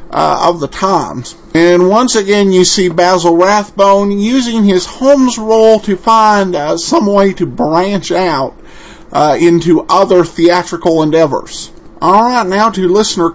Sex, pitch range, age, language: male, 170-220 Hz, 50-69, English